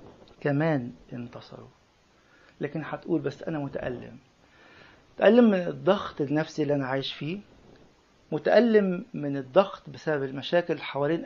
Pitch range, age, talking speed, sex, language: 140-180 Hz, 50-69, 110 wpm, male, English